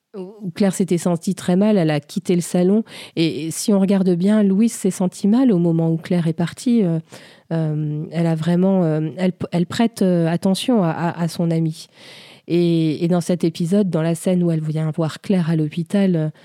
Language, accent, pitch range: French, French, 165-195 Hz